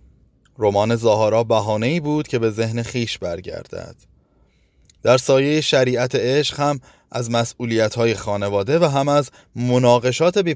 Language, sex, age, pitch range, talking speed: Persian, male, 20-39, 95-130 Hz, 130 wpm